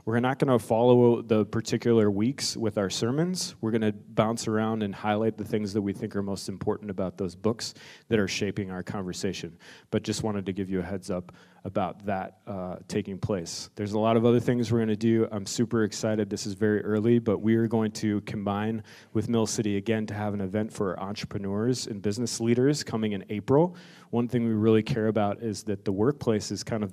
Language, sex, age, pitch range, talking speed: English, male, 30-49, 100-115 Hz, 215 wpm